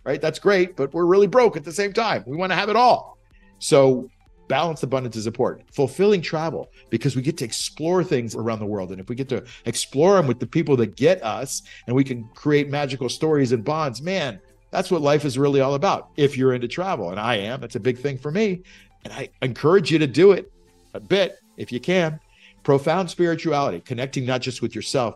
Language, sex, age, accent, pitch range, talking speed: English, male, 50-69, American, 105-150 Hz, 225 wpm